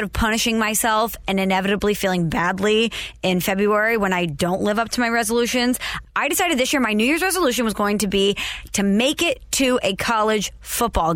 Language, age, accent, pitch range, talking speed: English, 20-39, American, 190-240 Hz, 195 wpm